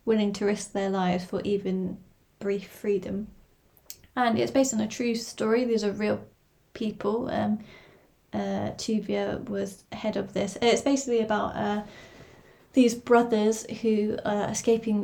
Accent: British